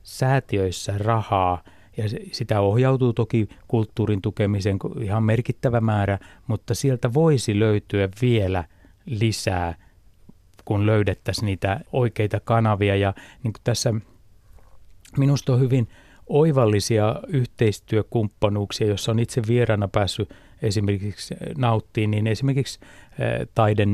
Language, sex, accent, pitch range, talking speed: Finnish, male, native, 100-120 Hz, 100 wpm